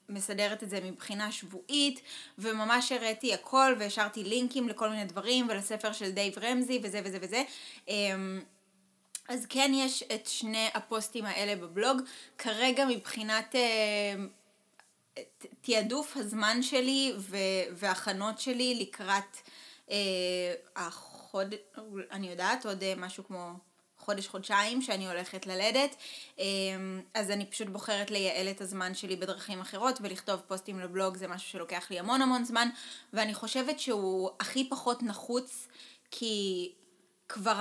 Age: 20-39